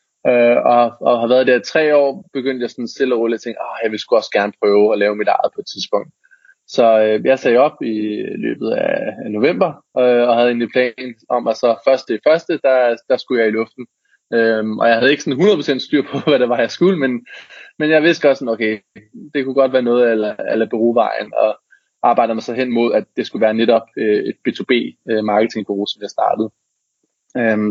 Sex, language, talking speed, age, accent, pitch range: male, Danish, 220 wpm, 20-39, native, 115-135 Hz